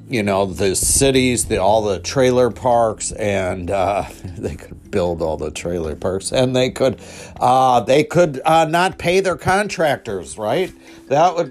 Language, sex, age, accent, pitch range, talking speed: English, male, 50-69, American, 95-125 Hz, 165 wpm